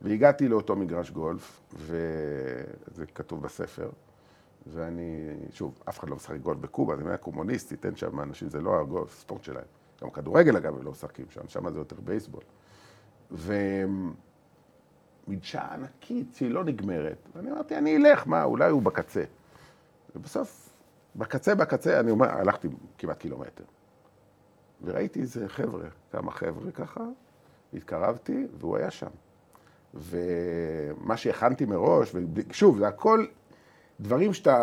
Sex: male